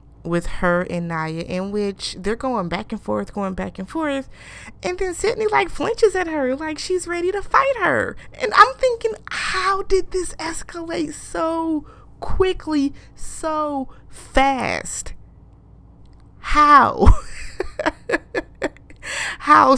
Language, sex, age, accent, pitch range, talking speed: English, female, 20-39, American, 175-270 Hz, 125 wpm